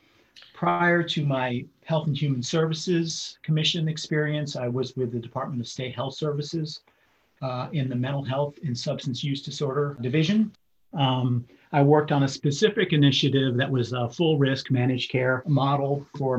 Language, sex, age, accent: English, male, 40-59, American